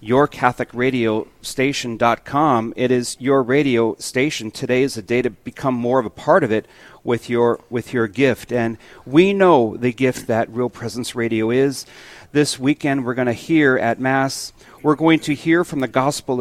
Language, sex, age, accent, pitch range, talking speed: English, male, 40-59, American, 120-150 Hz, 175 wpm